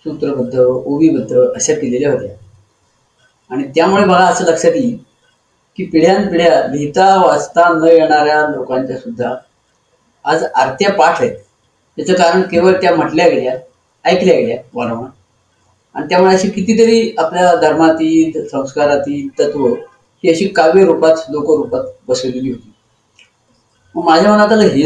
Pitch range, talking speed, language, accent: 135-195 Hz, 80 wpm, Marathi, native